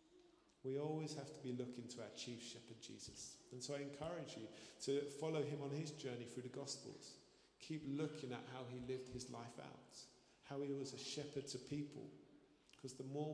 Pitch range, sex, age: 125-145 Hz, male, 40-59